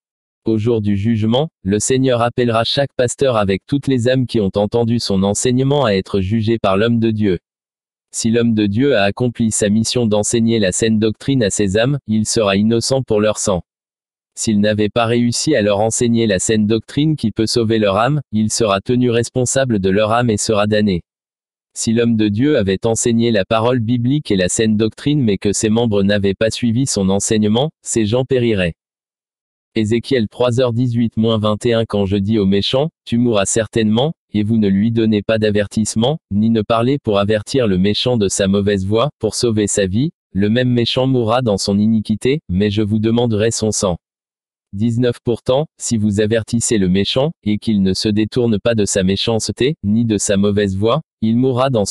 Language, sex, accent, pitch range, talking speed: French, male, French, 105-120 Hz, 190 wpm